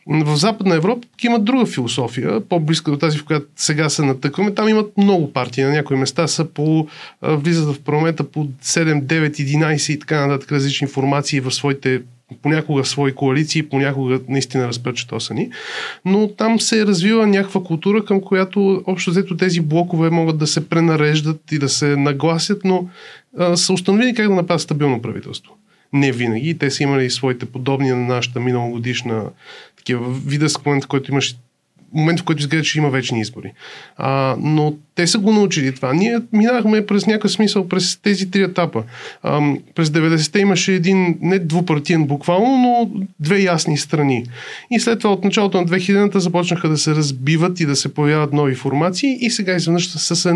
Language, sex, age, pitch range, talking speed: Bulgarian, male, 30-49, 140-190 Hz, 175 wpm